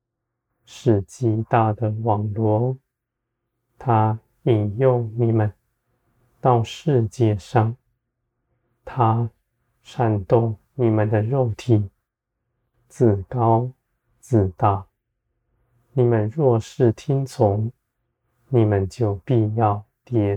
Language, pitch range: Chinese, 110-120 Hz